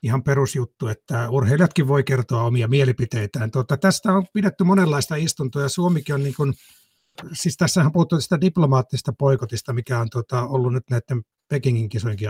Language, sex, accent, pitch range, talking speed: Finnish, male, native, 120-150 Hz, 155 wpm